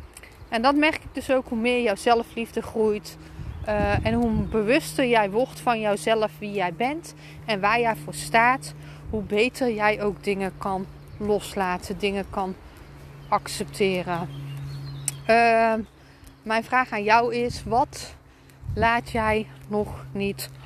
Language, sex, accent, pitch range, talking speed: Dutch, female, Dutch, 205-245 Hz, 140 wpm